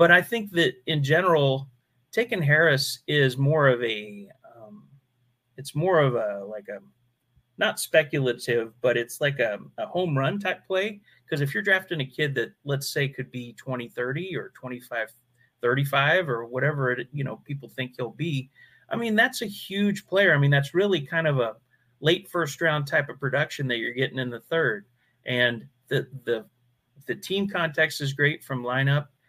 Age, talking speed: 30-49, 180 wpm